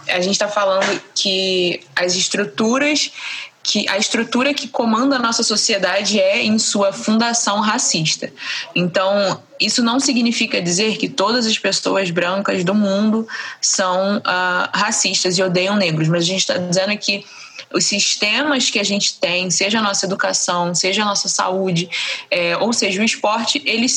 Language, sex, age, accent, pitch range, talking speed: Portuguese, female, 20-39, Brazilian, 185-225 Hz, 160 wpm